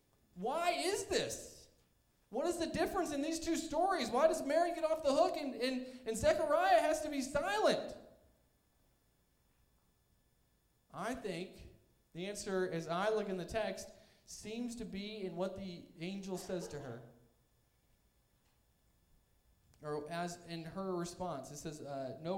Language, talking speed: English, 145 wpm